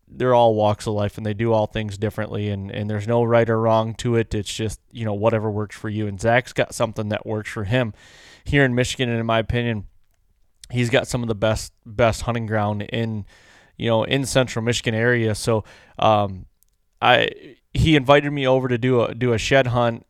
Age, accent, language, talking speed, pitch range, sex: 20-39, American, English, 220 wpm, 110-130 Hz, male